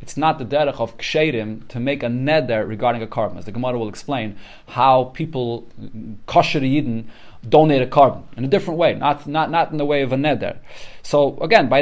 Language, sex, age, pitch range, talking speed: English, male, 30-49, 130-180 Hz, 205 wpm